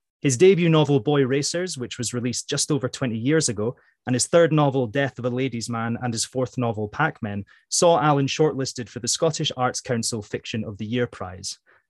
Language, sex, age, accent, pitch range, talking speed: English, male, 30-49, British, 115-150 Hz, 205 wpm